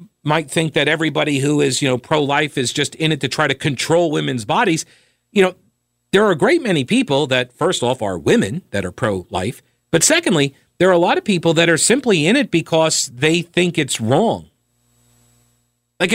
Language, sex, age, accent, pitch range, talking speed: English, male, 50-69, American, 120-165 Hz, 200 wpm